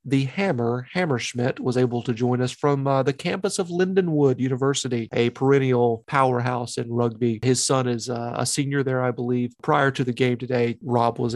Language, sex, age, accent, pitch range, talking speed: English, male, 40-59, American, 120-140 Hz, 190 wpm